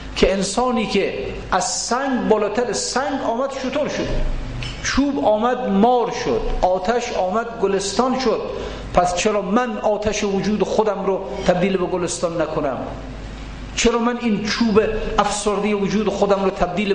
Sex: male